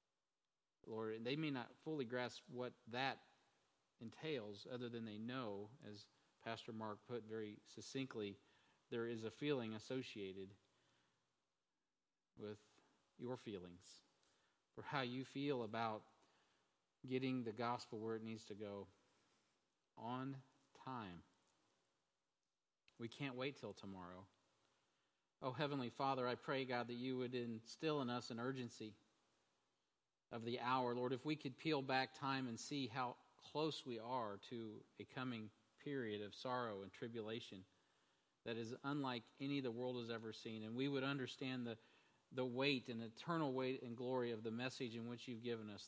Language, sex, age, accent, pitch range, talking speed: English, male, 40-59, American, 110-130 Hz, 150 wpm